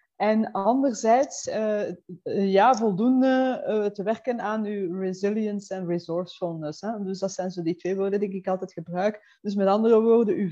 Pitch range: 190-220 Hz